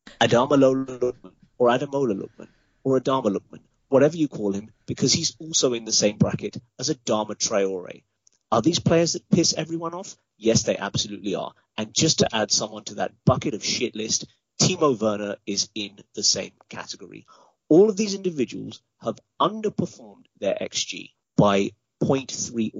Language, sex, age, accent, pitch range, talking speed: English, male, 30-49, British, 105-135 Hz, 160 wpm